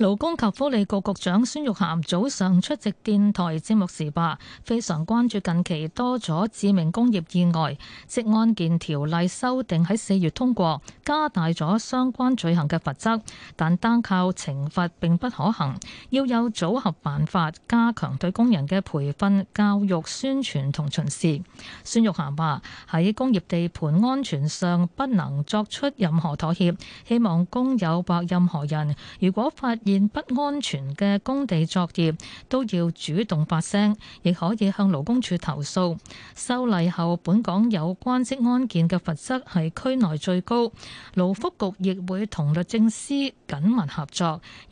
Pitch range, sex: 165-225 Hz, female